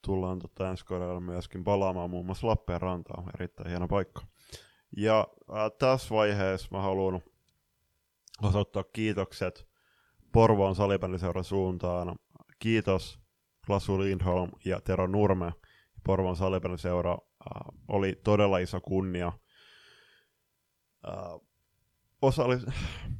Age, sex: 20-39, male